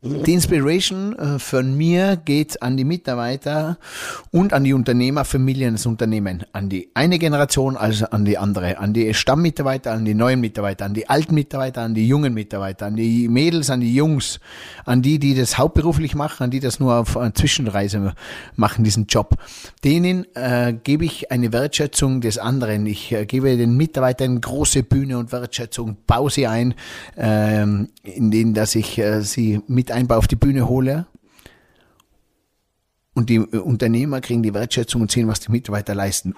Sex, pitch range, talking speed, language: male, 105-135 Hz, 170 wpm, German